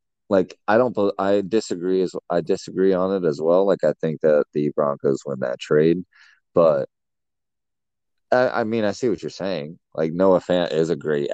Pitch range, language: 80-115 Hz, English